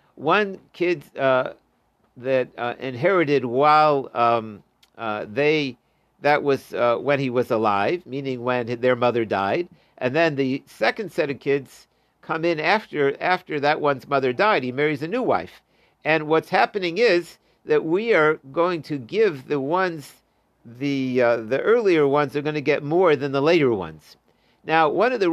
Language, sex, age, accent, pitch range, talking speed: English, male, 50-69, American, 130-170 Hz, 170 wpm